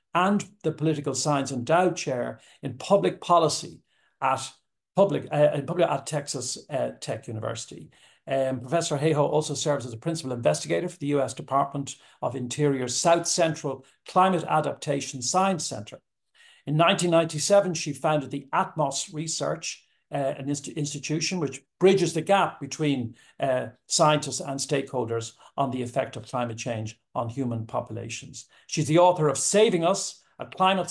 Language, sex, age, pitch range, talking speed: English, male, 60-79, 125-160 Hz, 140 wpm